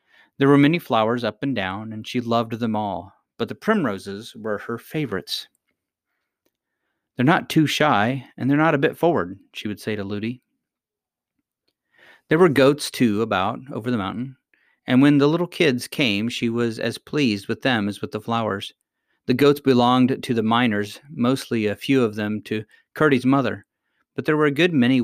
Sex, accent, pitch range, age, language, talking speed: male, American, 110-130 Hz, 40-59, English, 185 wpm